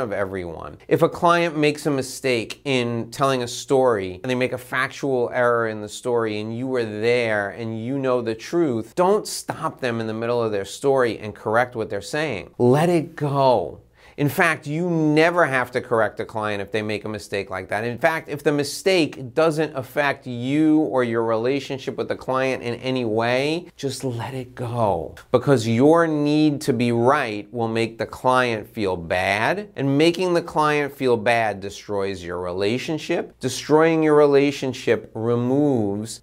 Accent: American